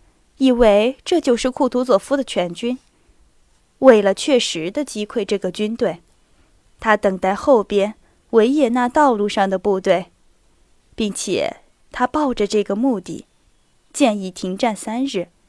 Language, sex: Chinese, female